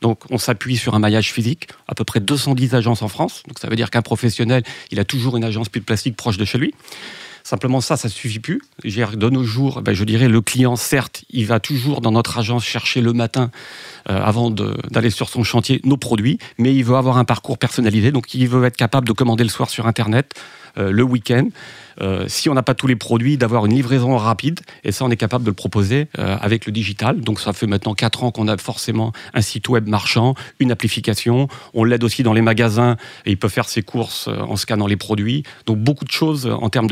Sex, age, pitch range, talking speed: male, 40-59, 110-130 Hz, 235 wpm